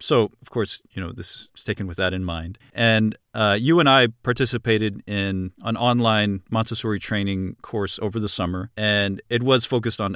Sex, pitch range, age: male, 100-120 Hz, 40-59